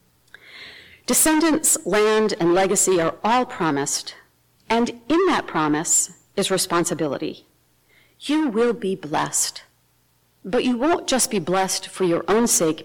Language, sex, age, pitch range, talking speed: English, female, 50-69, 155-220 Hz, 125 wpm